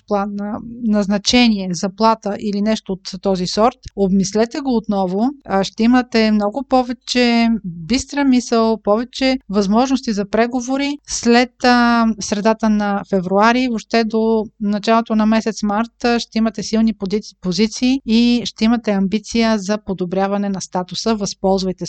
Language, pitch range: Bulgarian, 200-235 Hz